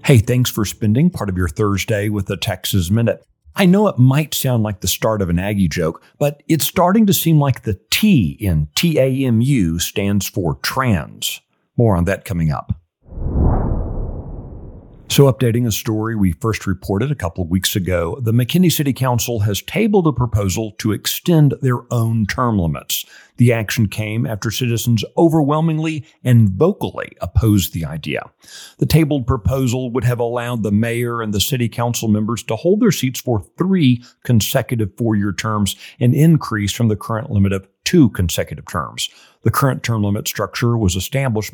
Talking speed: 170 wpm